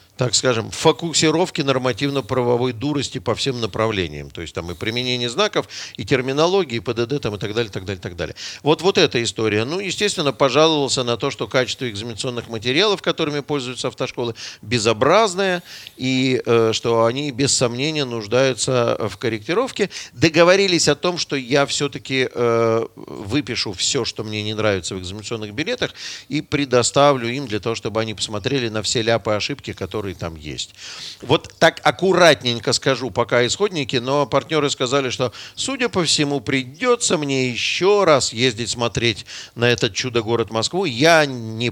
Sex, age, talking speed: male, 50-69, 160 wpm